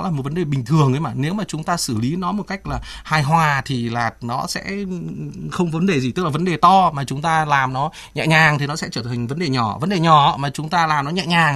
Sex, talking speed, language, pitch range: male, 300 wpm, Vietnamese, 155-205 Hz